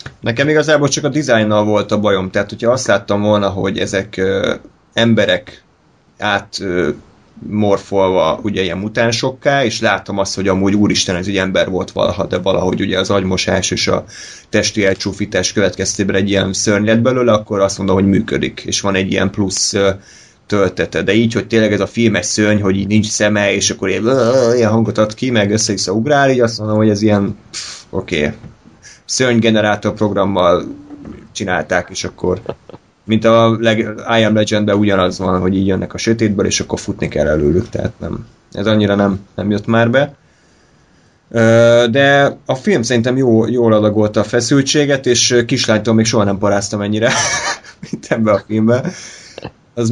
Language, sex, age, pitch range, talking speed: Hungarian, male, 30-49, 95-115 Hz, 165 wpm